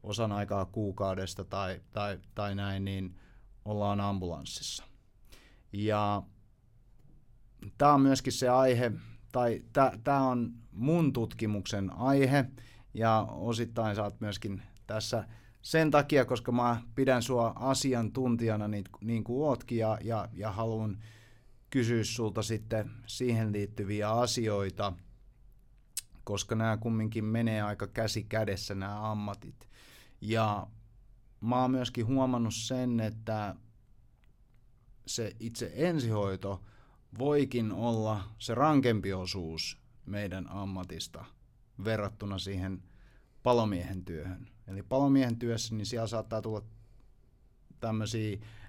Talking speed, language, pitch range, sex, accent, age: 105 wpm, Finnish, 100-120 Hz, male, native, 30-49